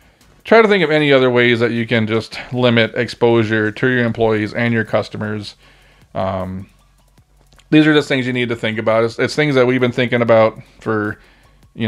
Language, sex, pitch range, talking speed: English, male, 115-150 Hz, 195 wpm